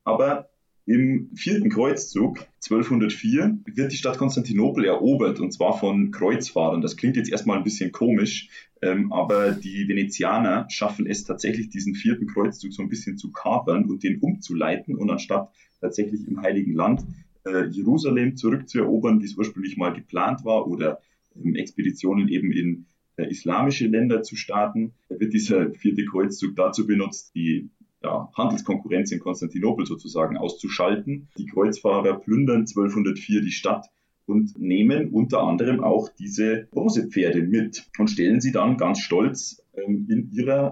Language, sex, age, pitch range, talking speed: German, male, 30-49, 100-125 Hz, 145 wpm